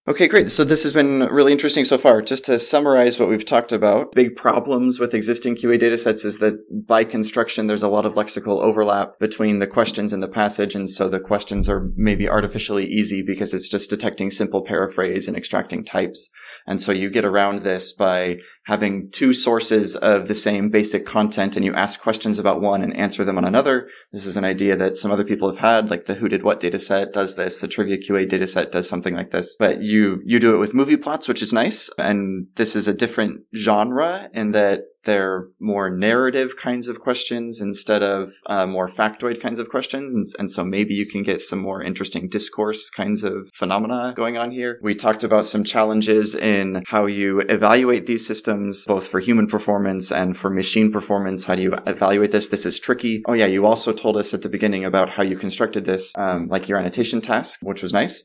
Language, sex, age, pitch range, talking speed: English, male, 20-39, 100-115 Hz, 215 wpm